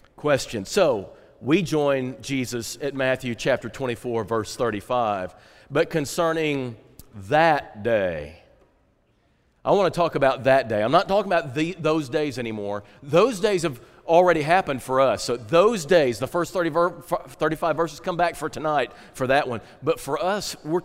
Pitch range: 130-175 Hz